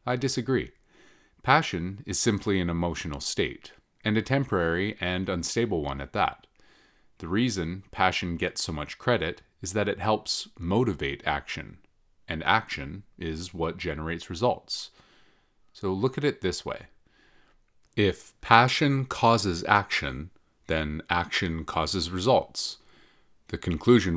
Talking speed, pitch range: 125 wpm, 85-115 Hz